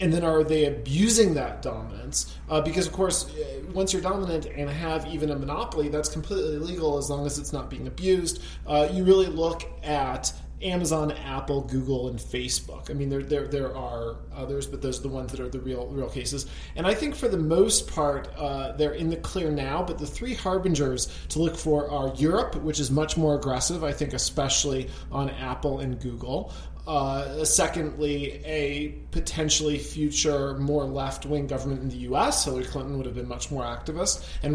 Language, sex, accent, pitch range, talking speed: English, male, American, 130-155 Hz, 195 wpm